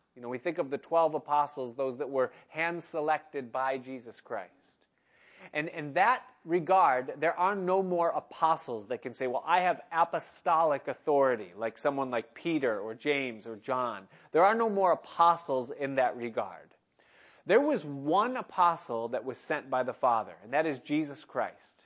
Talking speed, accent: 175 wpm, American